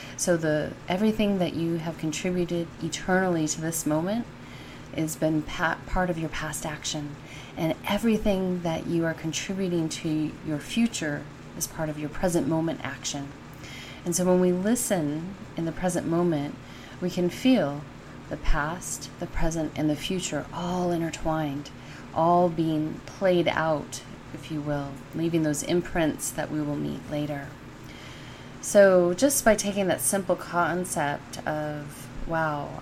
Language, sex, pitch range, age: English, female, 150-175 Hz, 30-49